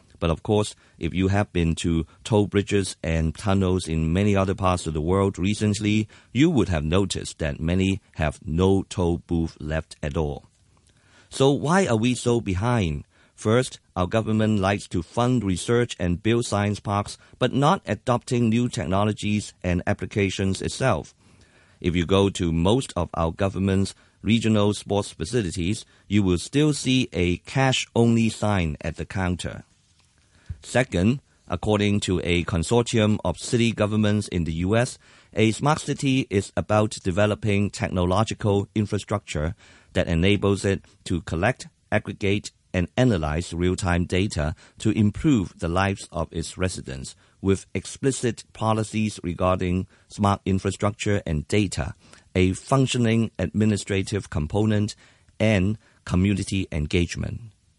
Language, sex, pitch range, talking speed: English, male, 90-110 Hz, 135 wpm